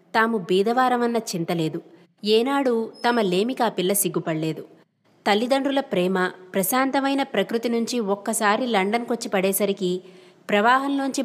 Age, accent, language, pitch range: 20-39, native, Telugu, 180-235 Hz